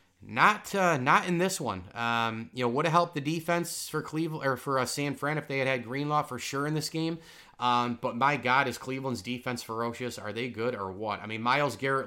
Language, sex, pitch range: English, male, 120-140 Hz